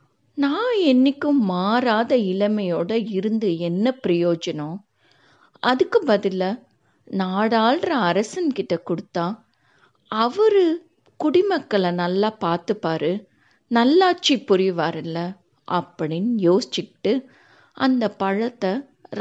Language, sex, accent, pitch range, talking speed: Tamil, female, native, 185-270 Hz, 70 wpm